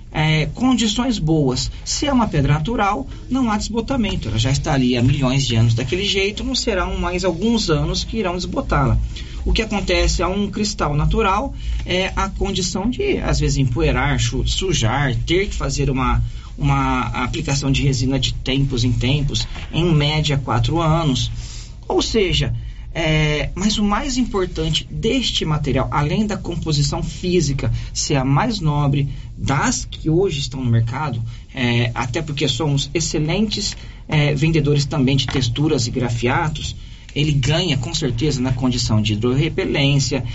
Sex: male